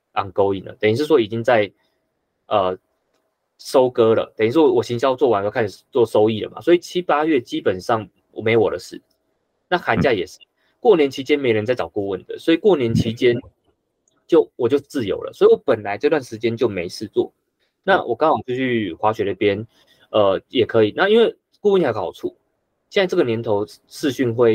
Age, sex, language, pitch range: 20-39, male, Chinese, 105-165 Hz